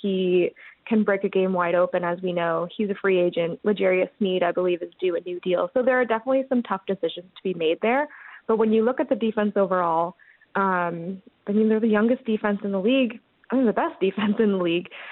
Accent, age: American, 20-39